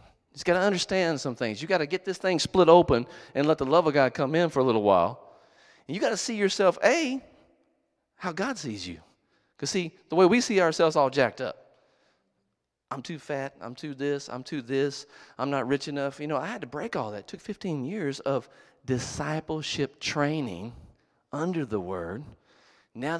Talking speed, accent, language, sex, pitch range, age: 205 wpm, American, English, male, 135-185 Hz, 40-59